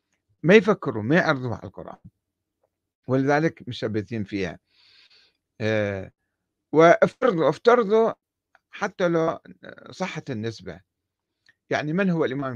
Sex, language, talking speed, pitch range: male, Arabic, 100 wpm, 105-170 Hz